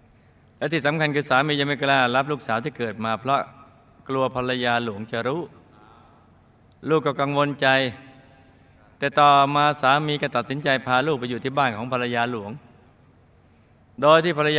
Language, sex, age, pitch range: Thai, male, 20-39, 110-140 Hz